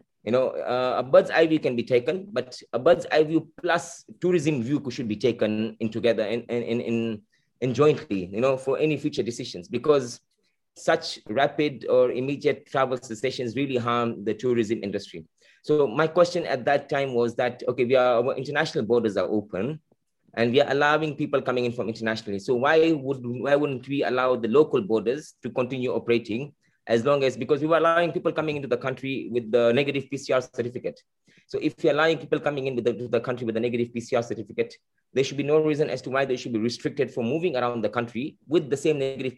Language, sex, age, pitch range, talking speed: English, male, 20-39, 120-150 Hz, 210 wpm